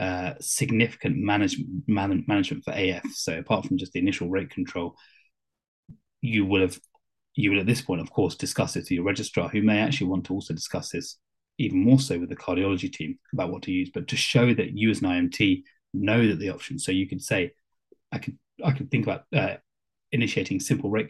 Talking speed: 210 wpm